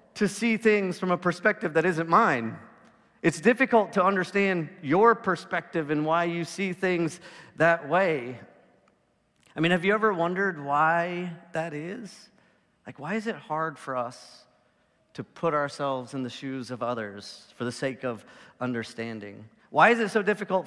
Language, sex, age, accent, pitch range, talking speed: English, male, 40-59, American, 125-180 Hz, 165 wpm